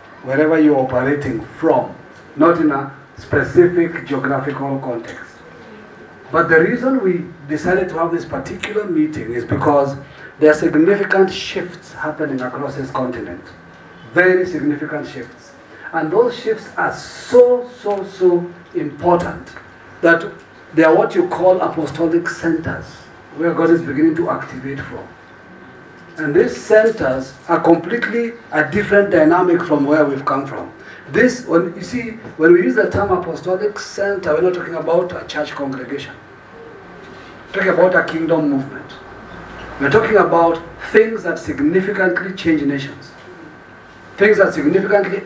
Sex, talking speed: male, 140 wpm